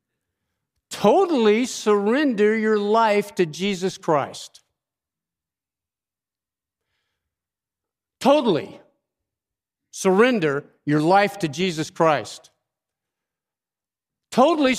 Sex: male